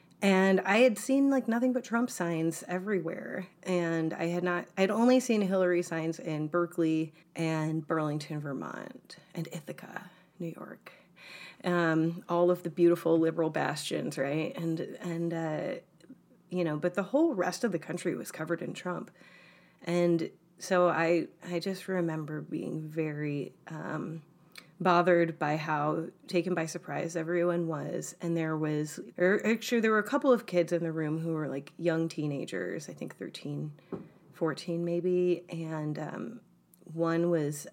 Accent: American